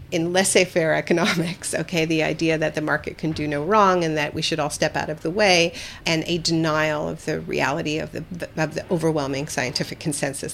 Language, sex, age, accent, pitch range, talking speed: English, female, 50-69, American, 150-185 Hz, 205 wpm